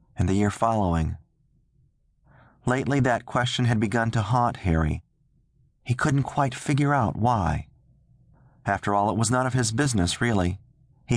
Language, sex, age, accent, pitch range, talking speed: English, male, 40-59, American, 100-130 Hz, 150 wpm